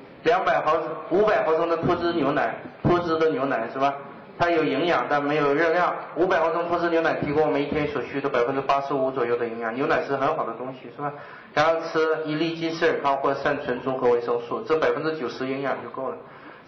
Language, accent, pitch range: Chinese, native, 130-170 Hz